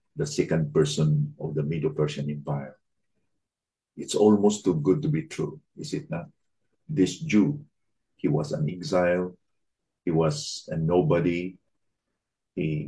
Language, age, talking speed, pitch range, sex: English, 50-69, 135 wpm, 75-95 Hz, male